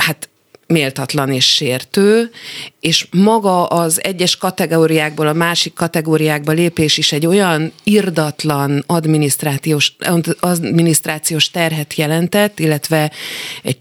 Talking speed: 100 wpm